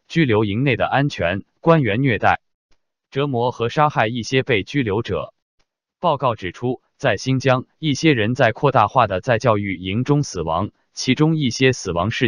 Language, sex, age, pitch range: Chinese, male, 20-39, 105-140 Hz